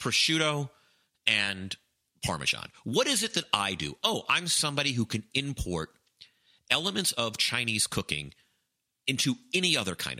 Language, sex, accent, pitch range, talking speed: English, male, American, 100-150 Hz, 135 wpm